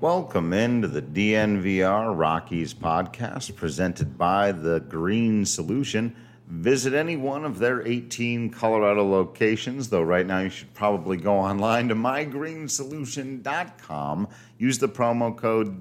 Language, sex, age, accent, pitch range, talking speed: English, male, 50-69, American, 85-120 Hz, 125 wpm